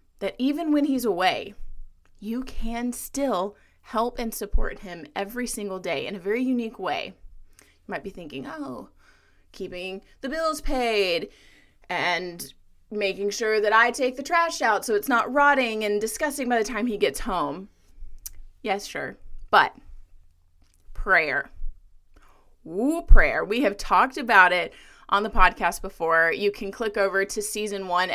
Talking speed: 155 wpm